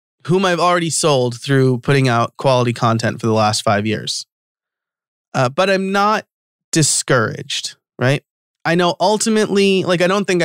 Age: 30-49